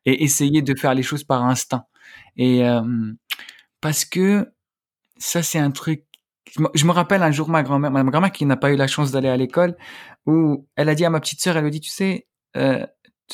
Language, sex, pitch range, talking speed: French, male, 130-155 Hz, 230 wpm